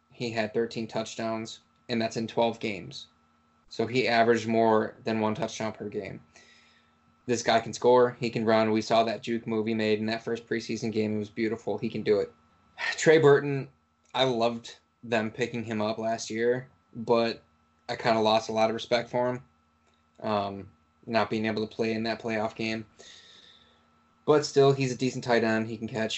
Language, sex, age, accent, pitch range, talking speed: English, male, 20-39, American, 110-125 Hz, 195 wpm